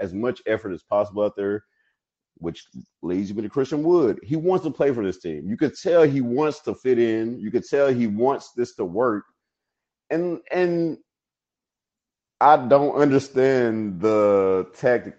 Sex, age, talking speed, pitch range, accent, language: male, 30-49, 170 wpm, 100-130 Hz, American, English